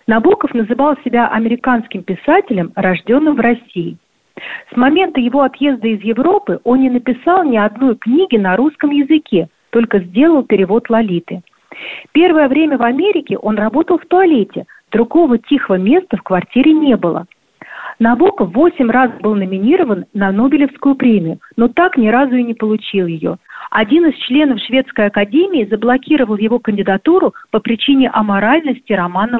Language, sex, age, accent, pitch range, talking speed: Russian, female, 40-59, native, 205-280 Hz, 145 wpm